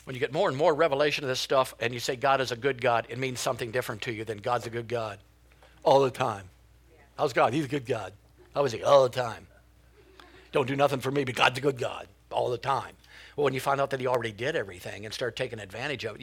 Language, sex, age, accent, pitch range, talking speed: English, male, 60-79, American, 115-155 Hz, 270 wpm